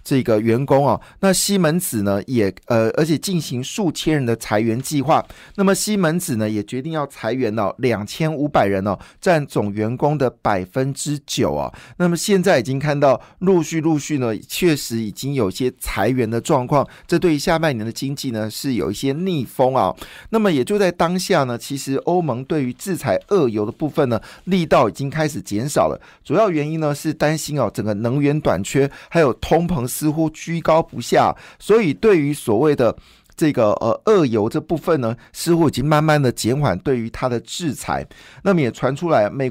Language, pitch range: Chinese, 120-160 Hz